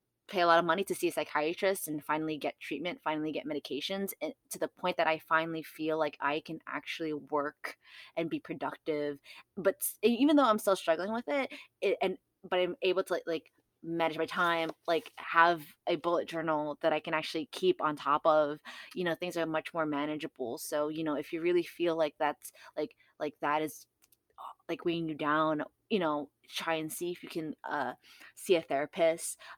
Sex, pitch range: female, 150-170 Hz